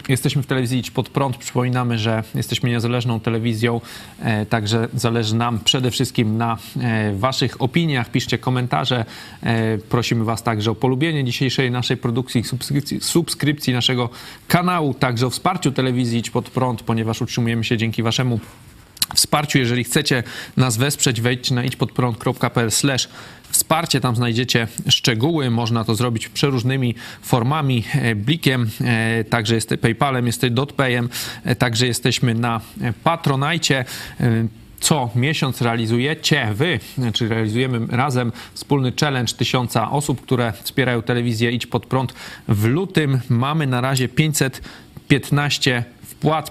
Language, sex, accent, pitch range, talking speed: Polish, male, native, 115-135 Hz, 125 wpm